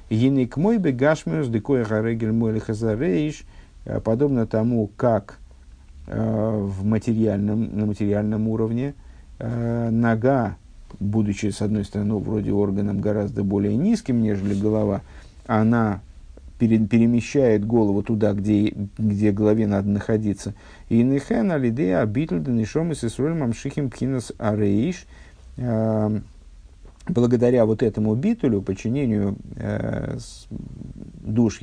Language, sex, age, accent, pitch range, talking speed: Russian, male, 50-69, native, 100-120 Hz, 110 wpm